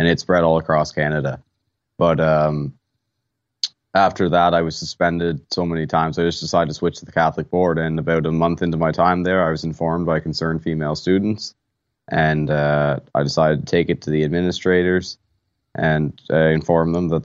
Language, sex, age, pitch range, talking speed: English, male, 20-39, 75-85 Hz, 190 wpm